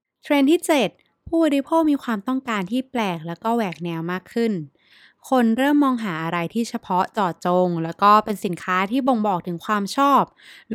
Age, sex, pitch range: 20-39, female, 180-240 Hz